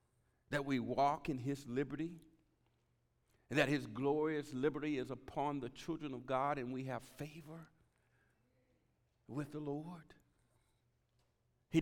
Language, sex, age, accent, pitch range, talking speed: English, male, 50-69, American, 110-145 Hz, 125 wpm